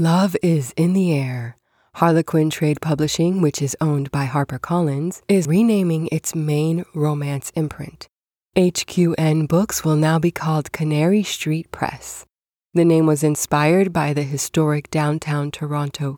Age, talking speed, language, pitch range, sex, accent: 20-39, 135 wpm, English, 145-175 Hz, female, American